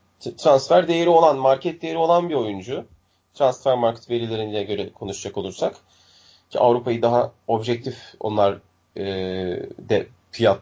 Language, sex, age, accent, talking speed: Turkish, male, 30-49, native, 125 wpm